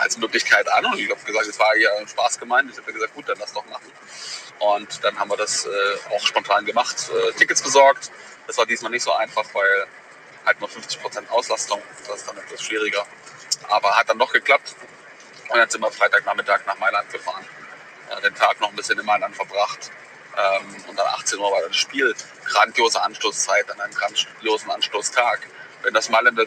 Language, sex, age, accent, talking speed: German, male, 30-49, German, 195 wpm